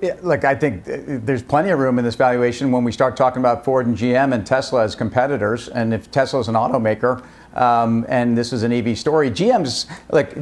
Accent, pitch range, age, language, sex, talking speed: American, 130-150 Hz, 50-69, English, male, 225 wpm